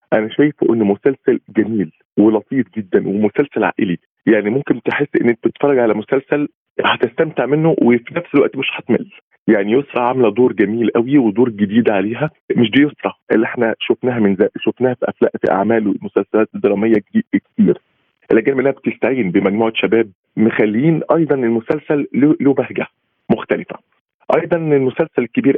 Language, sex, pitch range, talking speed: Arabic, male, 110-145 Hz, 145 wpm